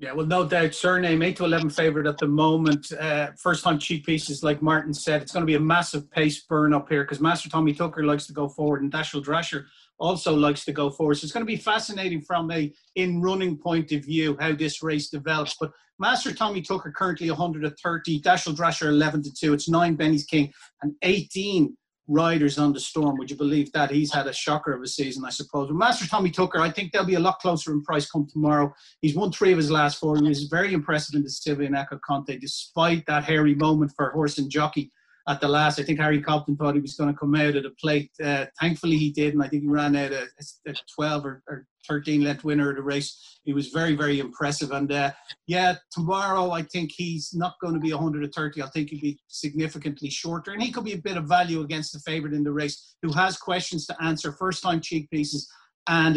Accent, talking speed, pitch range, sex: Irish, 230 wpm, 145-170 Hz, male